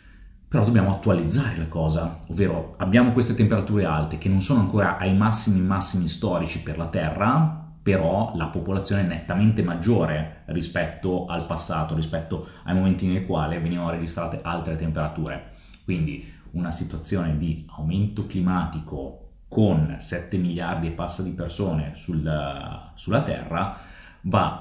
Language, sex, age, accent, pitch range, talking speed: Italian, male, 30-49, native, 80-95 Hz, 135 wpm